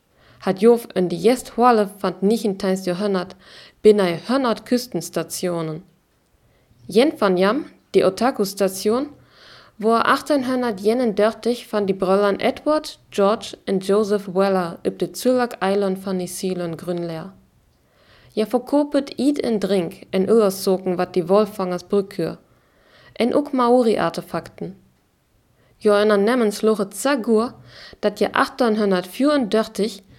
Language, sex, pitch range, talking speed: German, female, 185-235 Hz, 115 wpm